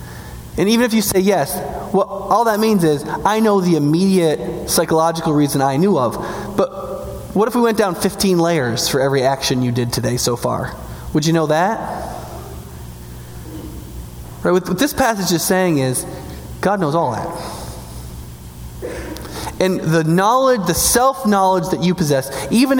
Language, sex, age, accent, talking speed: English, male, 20-39, American, 160 wpm